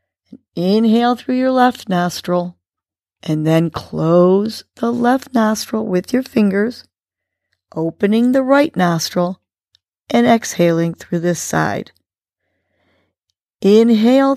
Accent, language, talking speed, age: American, English, 100 wpm, 40-59